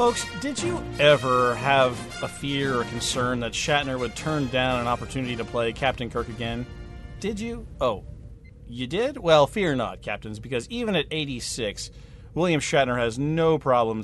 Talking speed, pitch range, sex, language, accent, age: 165 wpm, 115-150 Hz, male, English, American, 40-59